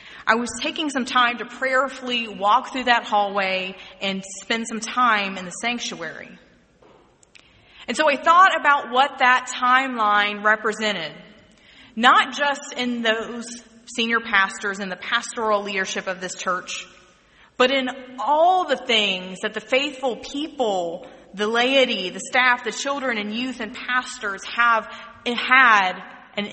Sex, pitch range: female, 195-250 Hz